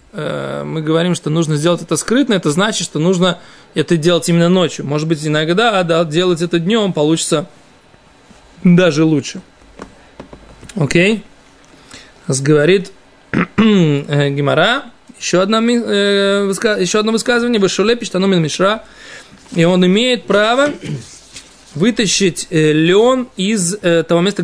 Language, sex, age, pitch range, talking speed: Russian, male, 20-39, 170-220 Hz, 125 wpm